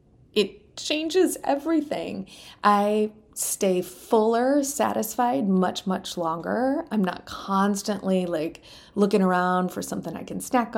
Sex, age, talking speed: female, 30-49, 115 wpm